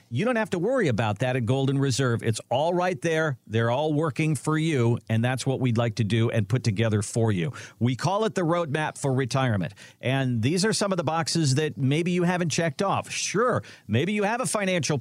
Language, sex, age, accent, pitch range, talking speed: English, male, 50-69, American, 115-150 Hz, 230 wpm